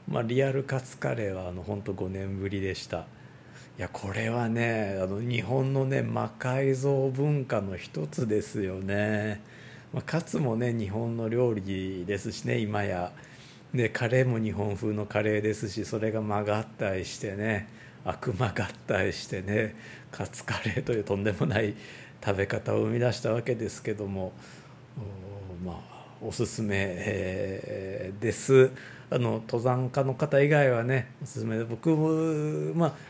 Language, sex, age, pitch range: Japanese, male, 50-69, 105-135 Hz